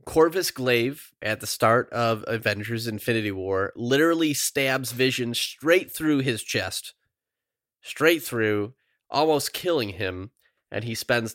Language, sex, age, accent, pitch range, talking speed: English, male, 30-49, American, 105-135 Hz, 125 wpm